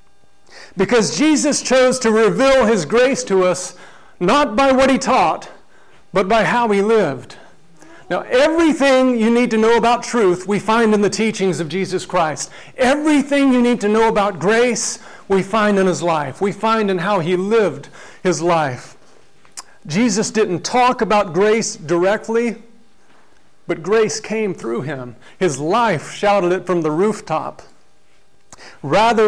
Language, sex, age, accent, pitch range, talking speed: English, male, 40-59, American, 185-230 Hz, 150 wpm